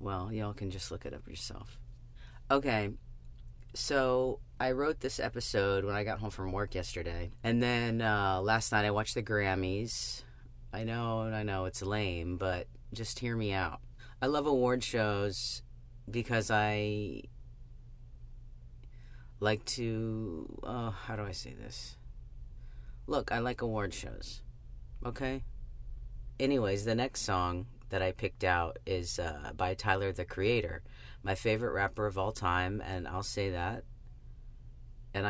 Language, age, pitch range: English, 30-49, 95-120 Hz